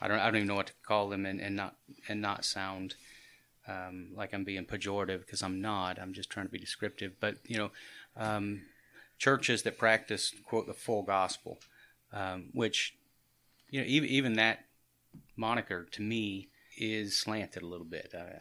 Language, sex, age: English, male, 30-49